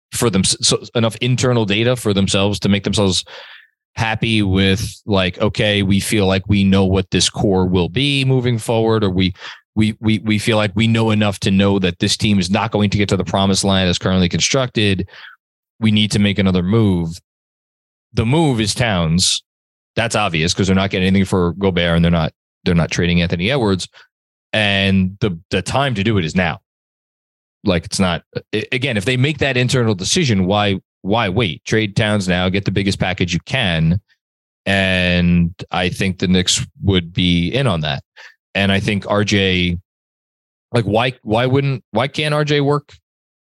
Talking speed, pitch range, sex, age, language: 185 wpm, 95-115 Hz, male, 20-39, English